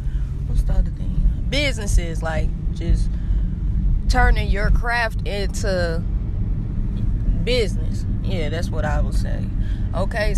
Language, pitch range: English, 90-100 Hz